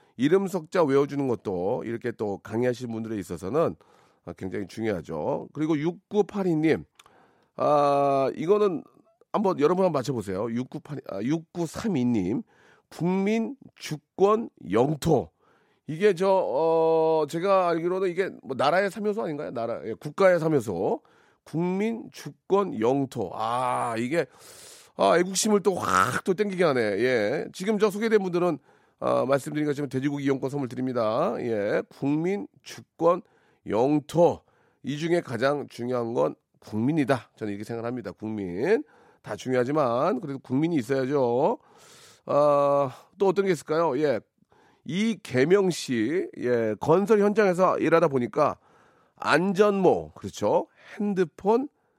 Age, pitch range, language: 40-59, 130-195 Hz, Korean